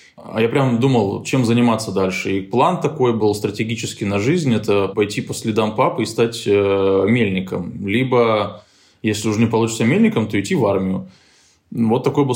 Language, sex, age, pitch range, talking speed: Russian, male, 20-39, 100-125 Hz, 175 wpm